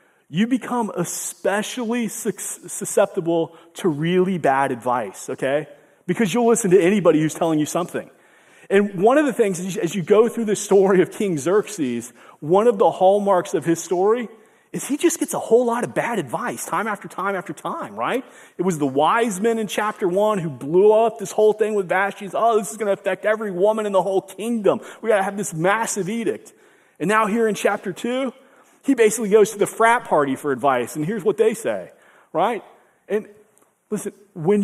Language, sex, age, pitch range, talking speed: English, male, 30-49, 185-230 Hz, 195 wpm